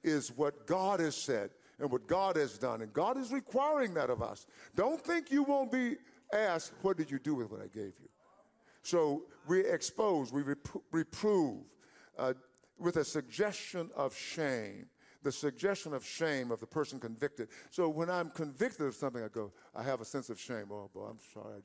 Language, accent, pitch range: English, American, 130-175 Hz